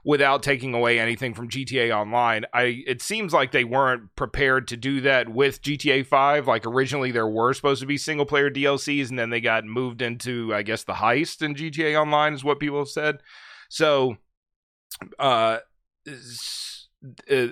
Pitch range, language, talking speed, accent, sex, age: 115-140 Hz, English, 175 wpm, American, male, 30-49